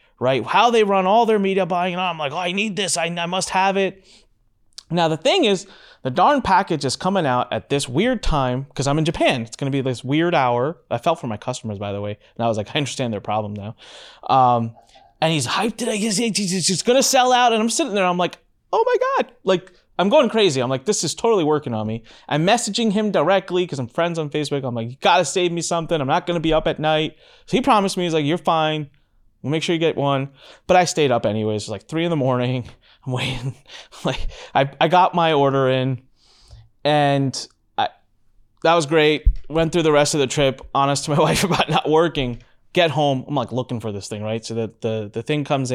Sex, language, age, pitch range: male, English, 30-49, 120-175 Hz